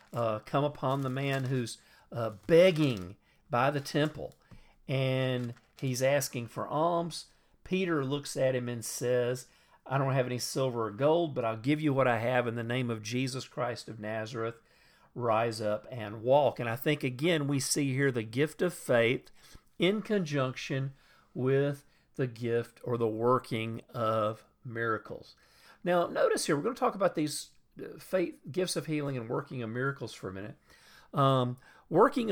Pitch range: 120-150 Hz